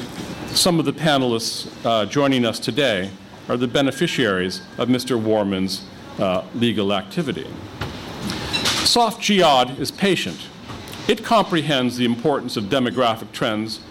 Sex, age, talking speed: male, 50-69, 120 wpm